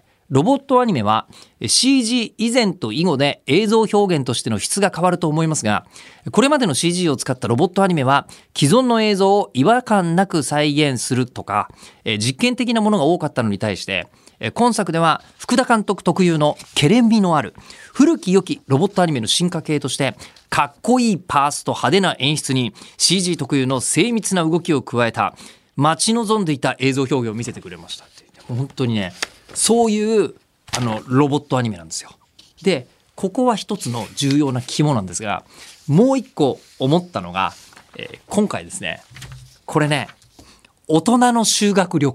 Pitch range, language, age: 135-220 Hz, Japanese, 40-59